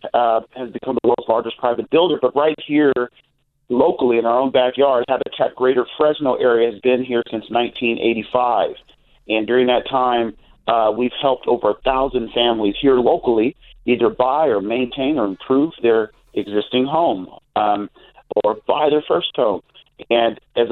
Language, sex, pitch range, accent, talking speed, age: English, male, 110-135 Hz, American, 160 wpm, 40-59